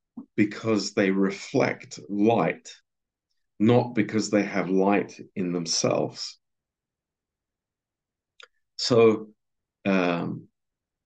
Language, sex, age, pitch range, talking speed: Romanian, male, 50-69, 95-110 Hz, 70 wpm